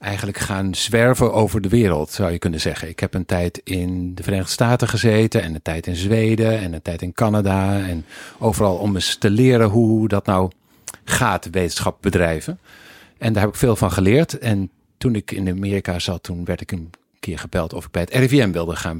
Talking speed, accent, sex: 210 wpm, Dutch, male